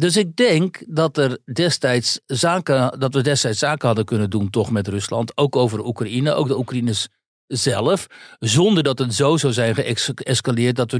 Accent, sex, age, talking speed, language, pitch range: Dutch, male, 60-79, 180 wpm, Dutch, 120-150 Hz